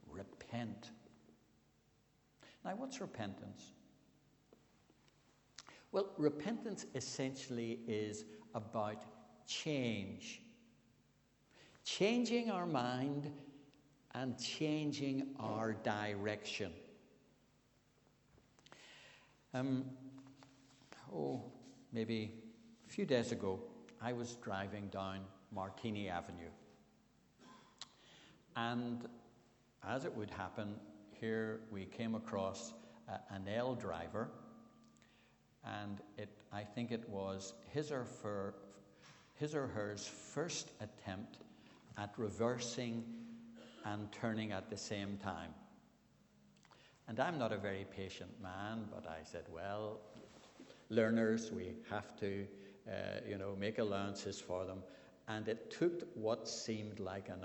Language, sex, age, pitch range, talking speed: English, male, 60-79, 100-120 Hz, 95 wpm